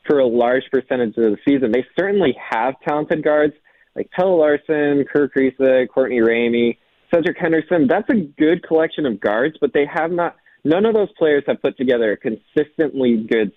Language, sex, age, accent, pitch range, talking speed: English, male, 20-39, American, 125-175 Hz, 185 wpm